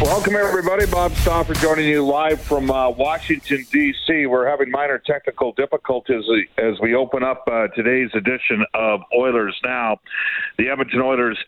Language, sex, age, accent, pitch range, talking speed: English, male, 50-69, American, 115-145 Hz, 150 wpm